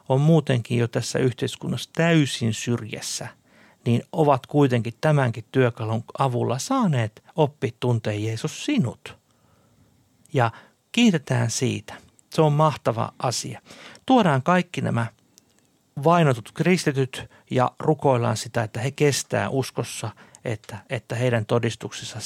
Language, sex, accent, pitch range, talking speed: Finnish, male, native, 115-145 Hz, 110 wpm